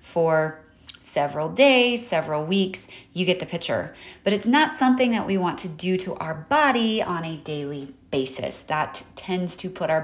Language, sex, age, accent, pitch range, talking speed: English, female, 30-49, American, 150-185 Hz, 180 wpm